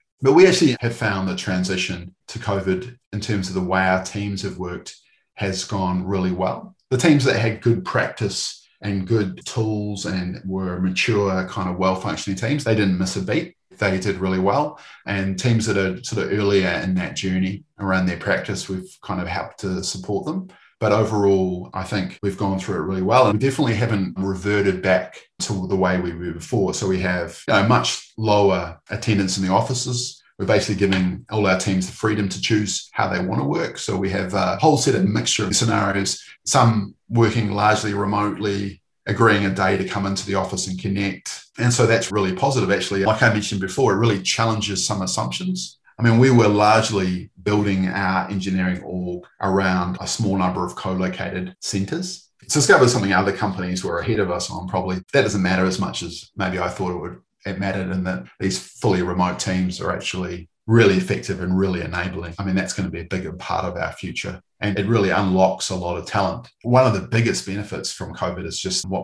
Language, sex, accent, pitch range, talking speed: English, male, Australian, 95-105 Hz, 205 wpm